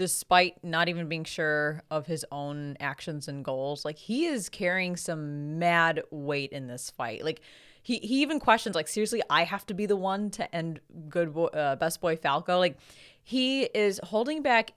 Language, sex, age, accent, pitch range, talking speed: English, female, 20-39, American, 145-190 Hz, 190 wpm